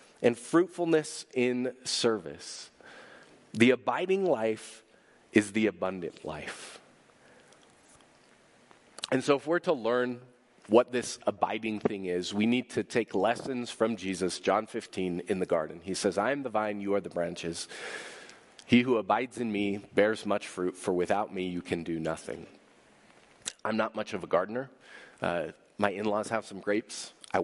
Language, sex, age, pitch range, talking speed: English, male, 30-49, 95-120 Hz, 155 wpm